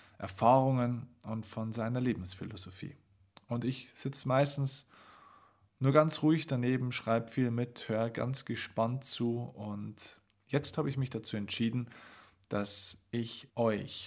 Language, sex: German, male